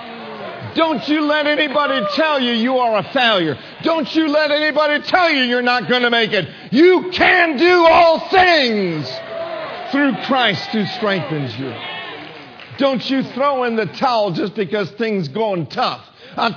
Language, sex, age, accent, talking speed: English, male, 50-69, American, 160 wpm